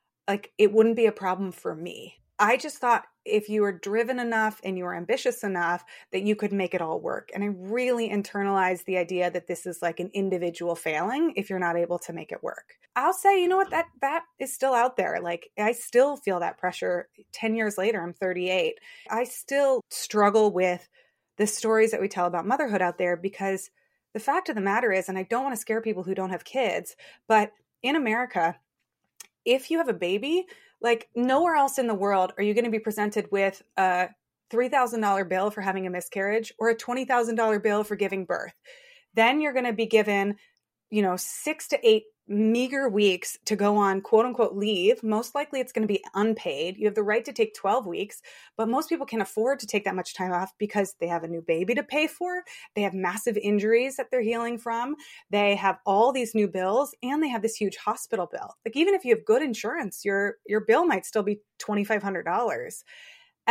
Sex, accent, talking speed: female, American, 215 wpm